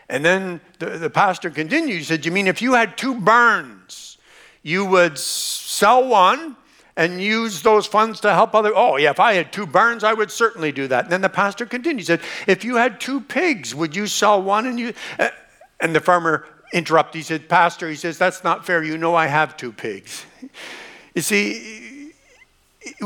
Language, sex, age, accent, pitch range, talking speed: English, male, 60-79, American, 150-225 Hz, 200 wpm